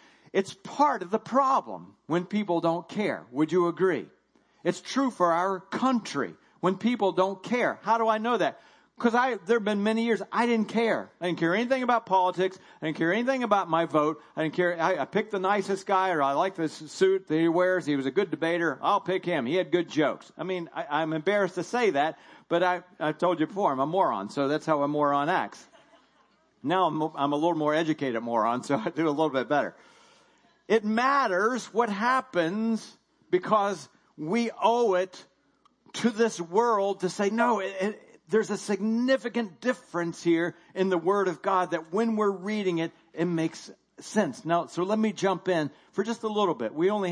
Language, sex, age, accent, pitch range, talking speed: English, male, 40-59, American, 160-215 Hz, 205 wpm